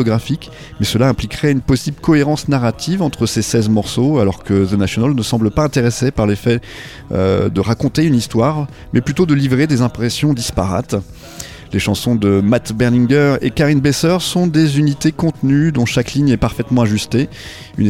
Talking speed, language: 170 wpm, French